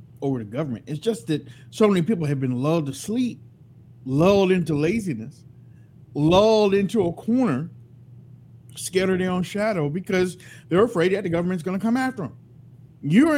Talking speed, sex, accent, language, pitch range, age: 170 wpm, male, American, English, 130-200 Hz, 50-69